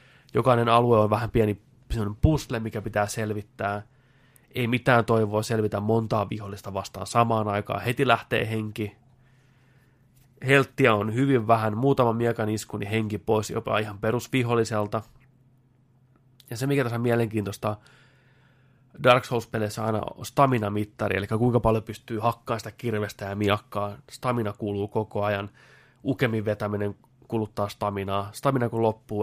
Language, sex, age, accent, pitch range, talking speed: Finnish, male, 20-39, native, 105-130 Hz, 130 wpm